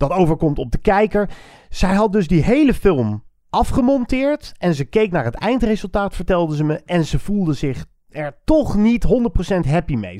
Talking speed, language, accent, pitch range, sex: 185 wpm, Dutch, Dutch, 150-210 Hz, male